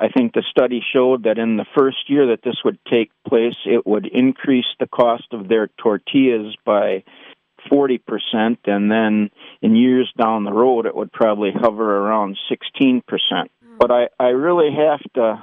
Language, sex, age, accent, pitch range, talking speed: English, male, 50-69, American, 110-130 Hz, 170 wpm